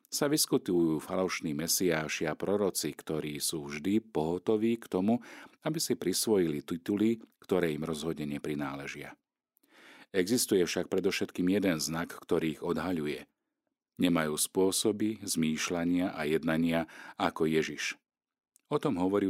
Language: Slovak